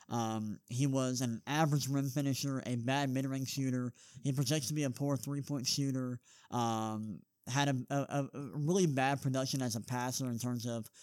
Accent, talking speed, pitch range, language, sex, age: American, 190 wpm, 125-145 Hz, English, male, 20-39